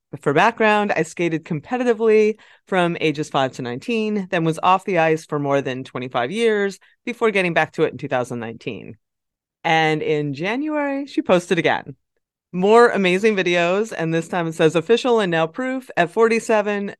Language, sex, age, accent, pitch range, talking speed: English, female, 30-49, American, 155-205 Hz, 165 wpm